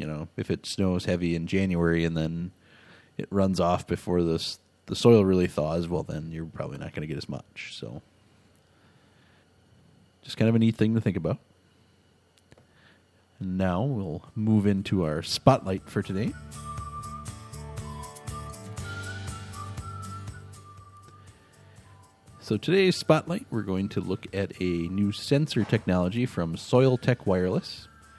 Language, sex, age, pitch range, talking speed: English, male, 30-49, 90-115 Hz, 135 wpm